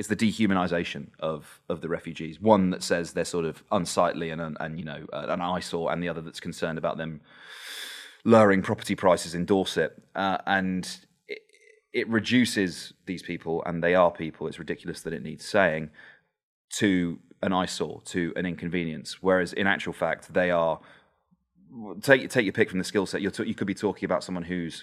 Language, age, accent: English, 30-49, British